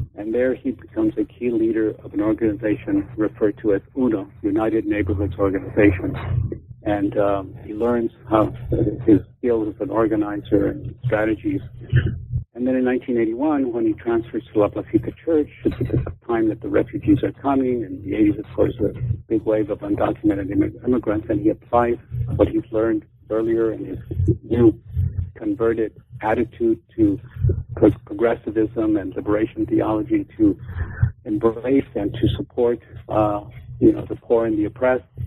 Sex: male